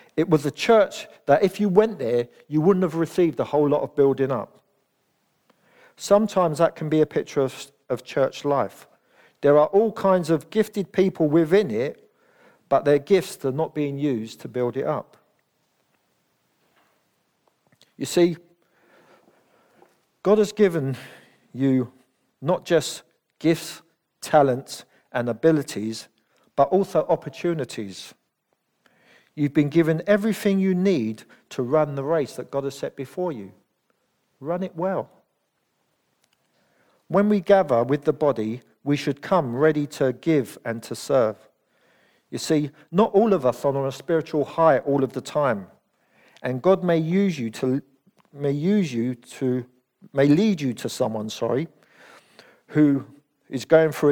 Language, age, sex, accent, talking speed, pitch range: English, 50-69, male, British, 145 wpm, 135-180 Hz